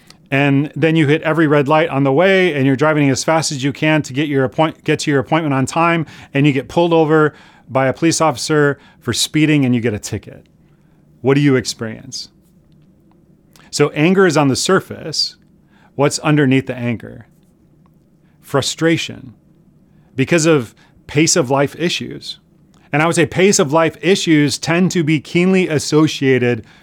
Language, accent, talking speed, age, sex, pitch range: English, American, 175 wpm, 30-49, male, 130-165 Hz